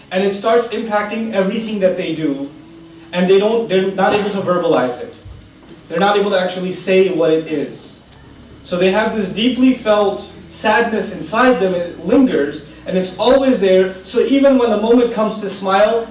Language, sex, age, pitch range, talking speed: English, male, 30-49, 190-255 Hz, 185 wpm